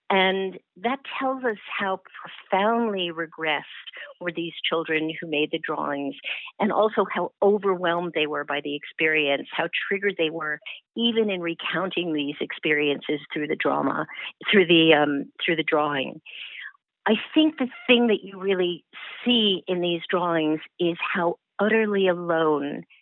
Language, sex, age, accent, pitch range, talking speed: English, female, 50-69, American, 155-185 Hz, 145 wpm